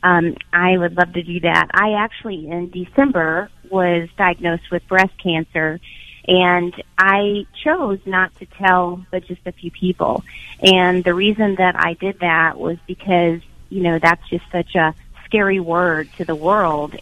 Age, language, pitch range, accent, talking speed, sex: 30-49, English, 170-190 Hz, American, 165 wpm, female